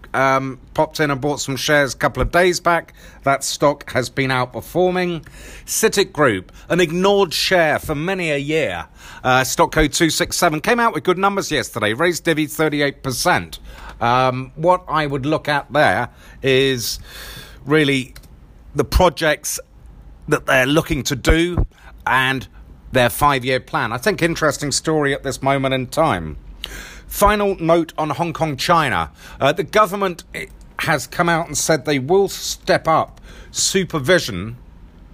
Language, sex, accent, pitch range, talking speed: English, male, British, 125-170 Hz, 150 wpm